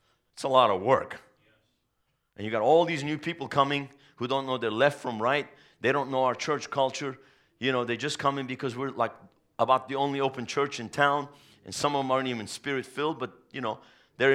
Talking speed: 225 wpm